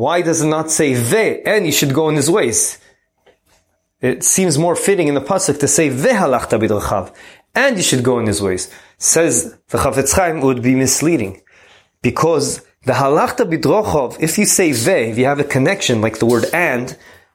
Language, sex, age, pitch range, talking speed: English, male, 30-49, 130-180 Hz, 190 wpm